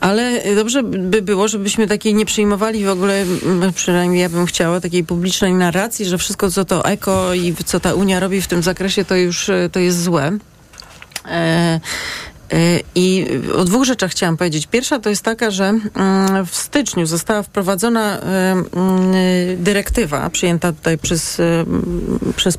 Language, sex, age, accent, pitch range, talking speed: Polish, female, 30-49, native, 175-205 Hz, 145 wpm